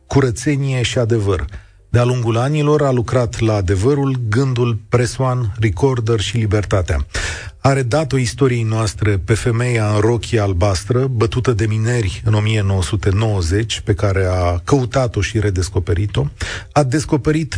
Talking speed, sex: 125 wpm, male